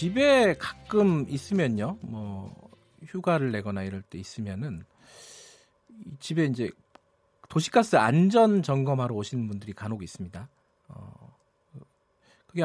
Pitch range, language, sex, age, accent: 115-190 Hz, Korean, male, 40-59, native